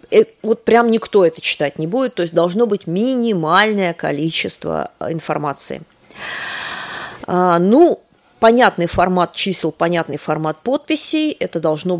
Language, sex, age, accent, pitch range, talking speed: Russian, female, 30-49, native, 165-240 Hz, 115 wpm